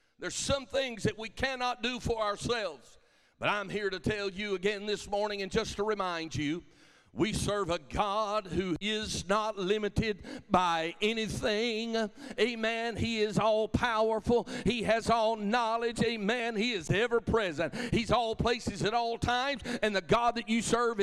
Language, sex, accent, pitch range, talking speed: English, male, American, 215-250 Hz, 165 wpm